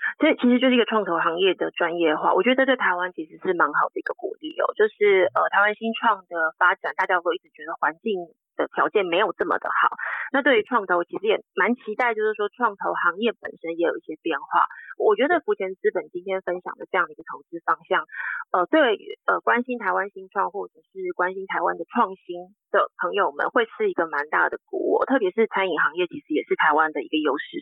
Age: 30-49